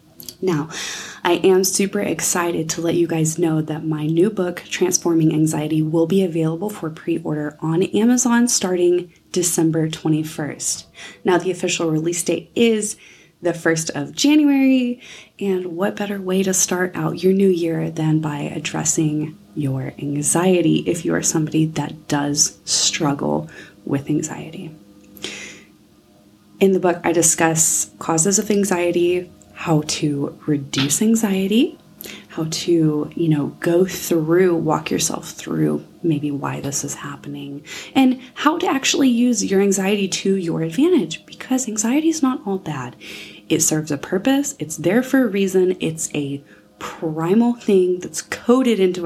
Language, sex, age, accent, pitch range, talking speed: English, female, 20-39, American, 150-190 Hz, 145 wpm